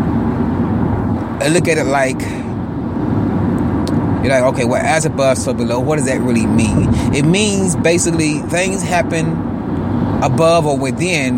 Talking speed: 130 wpm